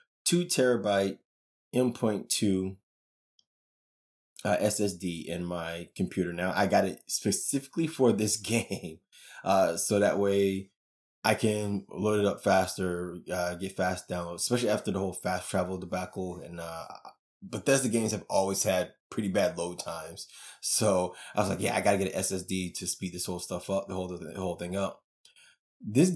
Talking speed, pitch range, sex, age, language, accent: 165 wpm, 90-105 Hz, male, 20-39, English, American